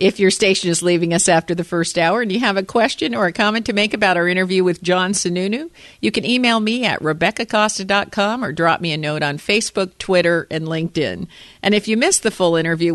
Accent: American